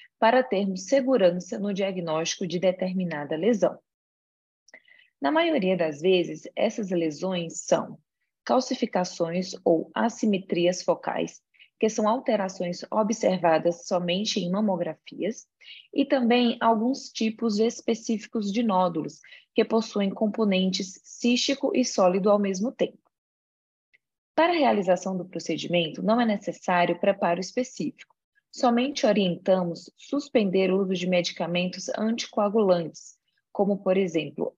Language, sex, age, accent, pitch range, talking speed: Portuguese, female, 20-39, Brazilian, 175-230 Hz, 110 wpm